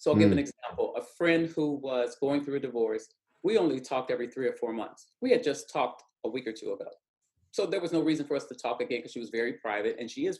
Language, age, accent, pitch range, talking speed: English, 40-59, American, 130-180 Hz, 275 wpm